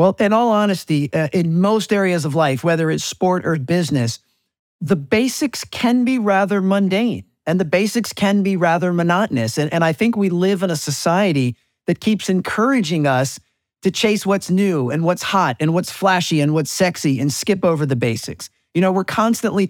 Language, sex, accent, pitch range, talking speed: English, male, American, 150-190 Hz, 190 wpm